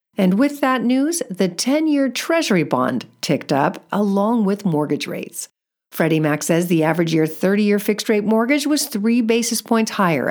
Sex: female